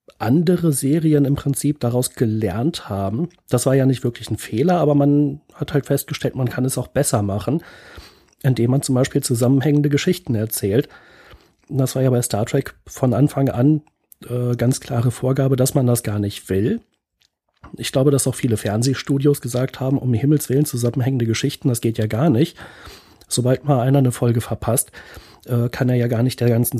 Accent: German